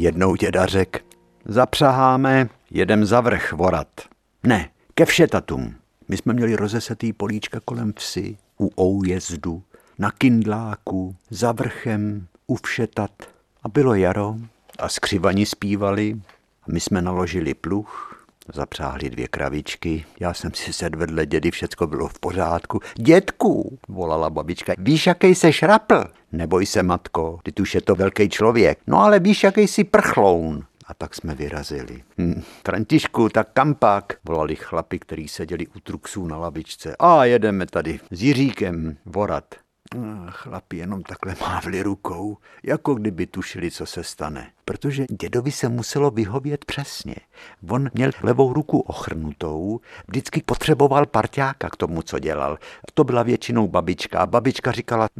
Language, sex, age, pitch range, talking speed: Czech, male, 60-79, 90-130 Hz, 140 wpm